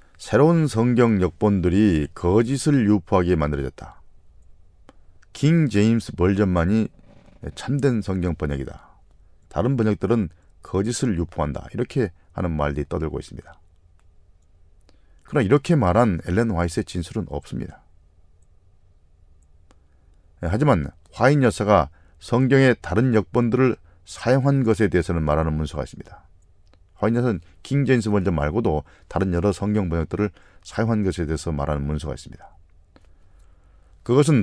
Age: 40-59